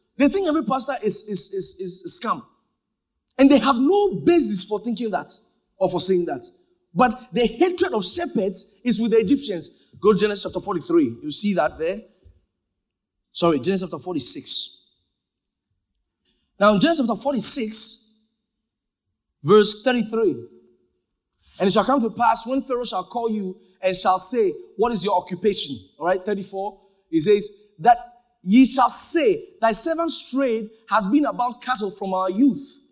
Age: 30-49